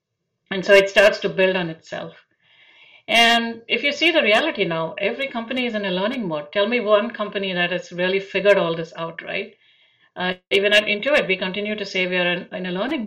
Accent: Indian